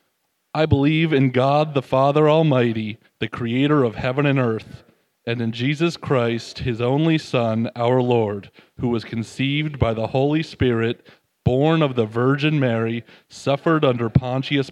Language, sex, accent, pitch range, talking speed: English, male, American, 115-140 Hz, 150 wpm